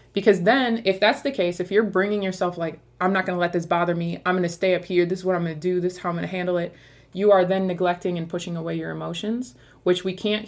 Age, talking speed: 20-39, 300 wpm